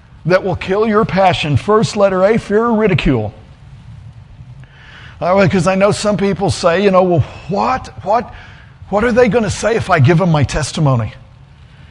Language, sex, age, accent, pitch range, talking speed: English, male, 50-69, American, 165-220 Hz, 175 wpm